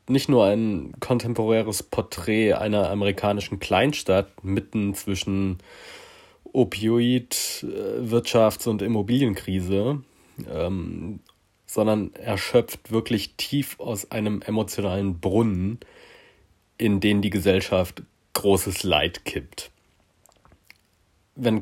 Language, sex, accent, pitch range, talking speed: German, male, German, 95-120 Hz, 85 wpm